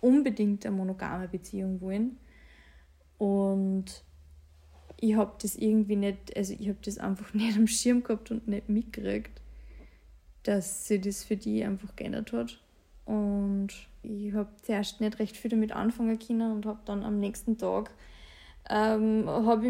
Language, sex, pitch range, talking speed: German, female, 195-230 Hz, 150 wpm